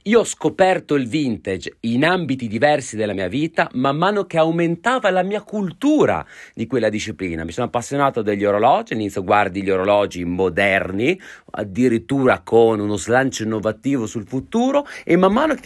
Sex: male